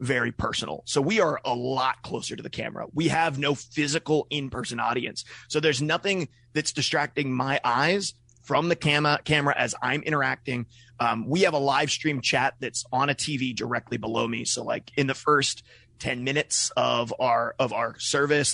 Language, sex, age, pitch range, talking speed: English, male, 30-49, 130-160 Hz, 185 wpm